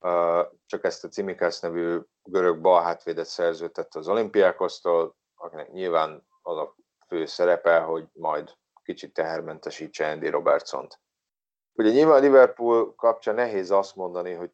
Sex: male